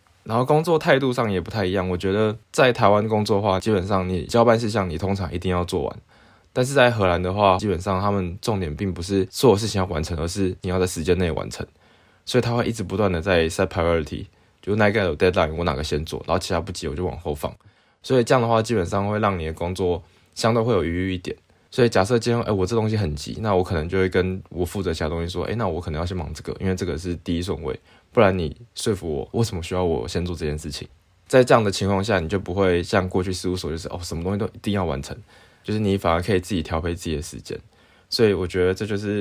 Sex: male